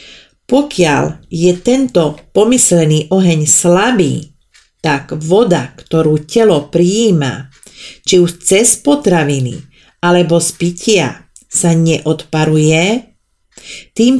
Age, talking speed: 40-59, 90 wpm